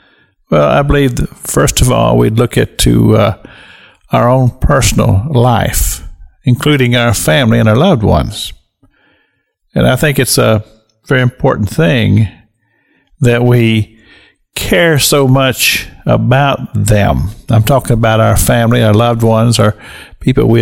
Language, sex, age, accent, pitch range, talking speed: English, male, 50-69, American, 115-140 Hz, 140 wpm